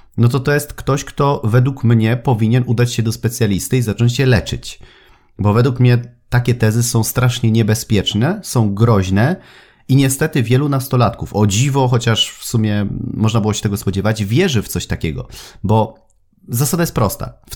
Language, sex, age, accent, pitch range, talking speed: Polish, male, 30-49, native, 110-125 Hz, 170 wpm